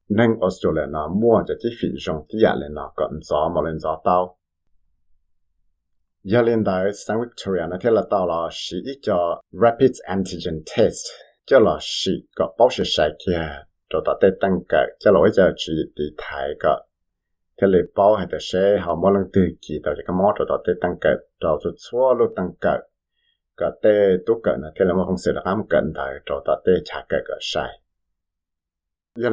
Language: English